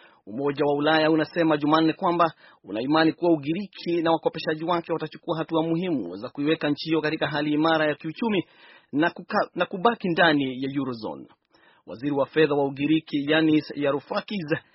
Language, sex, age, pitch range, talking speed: Swahili, male, 30-49, 145-170 Hz, 160 wpm